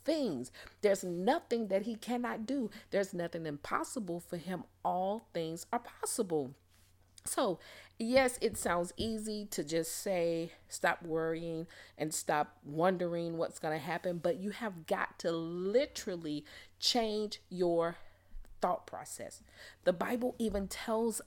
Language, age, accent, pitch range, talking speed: English, 40-59, American, 165-220 Hz, 135 wpm